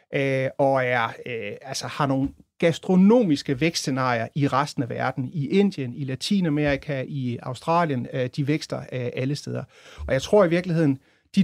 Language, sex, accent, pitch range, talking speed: Danish, male, native, 135-170 Hz, 130 wpm